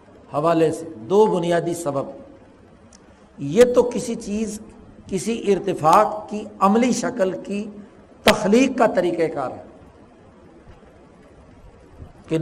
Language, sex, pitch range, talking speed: Urdu, male, 175-215 Hz, 100 wpm